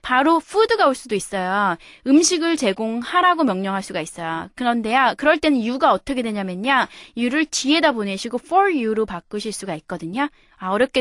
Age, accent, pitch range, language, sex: 20-39, native, 205-300 Hz, Korean, female